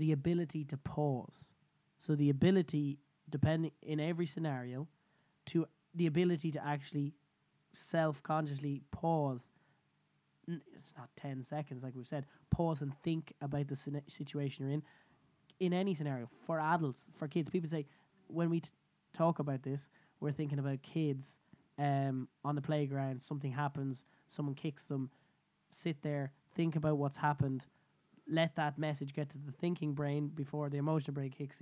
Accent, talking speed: Irish, 155 wpm